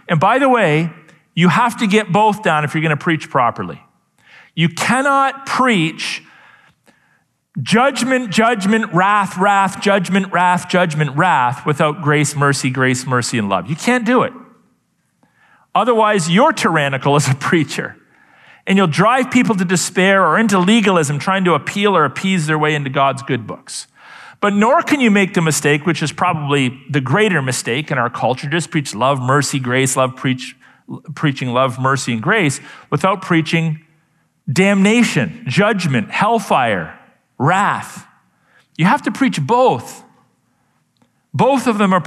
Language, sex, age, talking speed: English, male, 40-59, 155 wpm